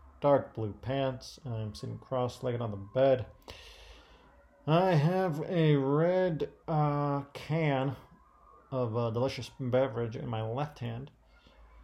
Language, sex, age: English, male, 30-49